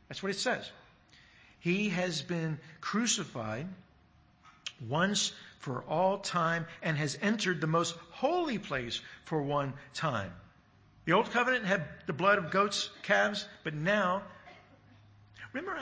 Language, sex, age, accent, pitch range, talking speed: English, male, 50-69, American, 130-190 Hz, 130 wpm